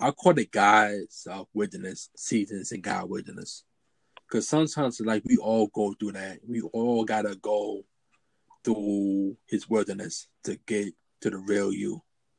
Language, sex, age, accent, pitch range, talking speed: English, male, 20-39, American, 100-120 Hz, 155 wpm